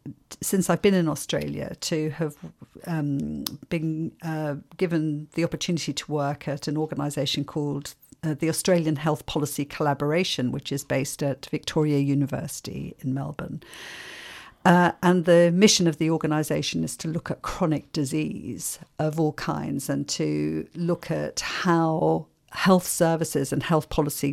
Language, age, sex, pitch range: English, 50-69, female, 145-170 Hz